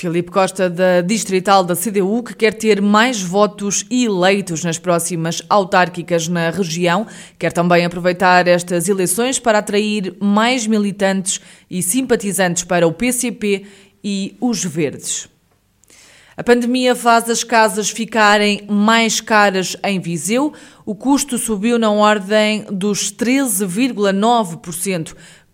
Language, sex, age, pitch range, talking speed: Portuguese, female, 20-39, 165-205 Hz, 120 wpm